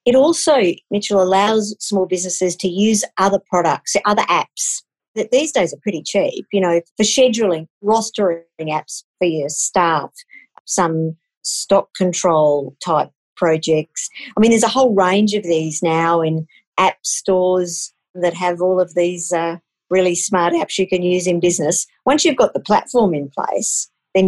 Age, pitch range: 50-69, 165-200 Hz